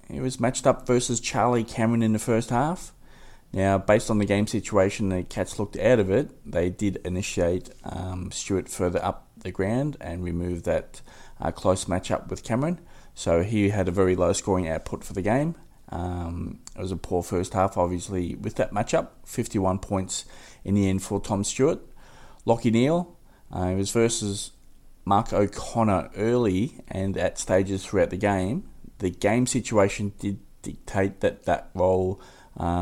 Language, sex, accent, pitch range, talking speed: English, male, Australian, 90-115 Hz, 170 wpm